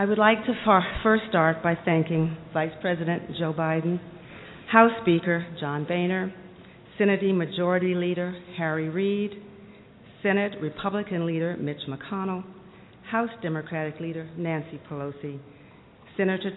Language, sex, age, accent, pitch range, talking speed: English, female, 50-69, American, 150-185 Hz, 115 wpm